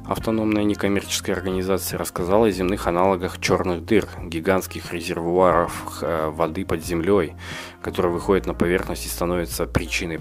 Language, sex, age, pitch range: Russian, male, 20-39, 80-100 Hz